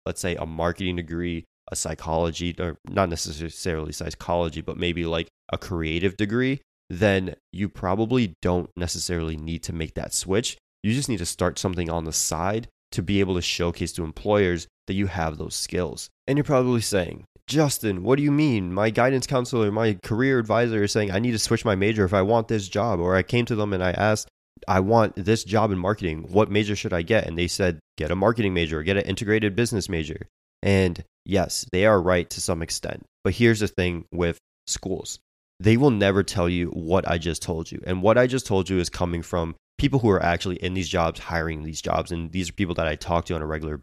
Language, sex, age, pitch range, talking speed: English, male, 20-39, 85-105 Hz, 220 wpm